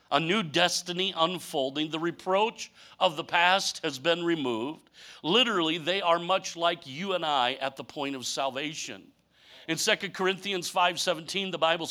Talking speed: 155 wpm